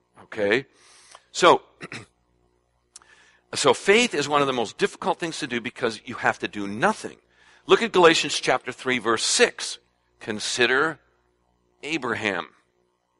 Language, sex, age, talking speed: English, male, 60-79, 125 wpm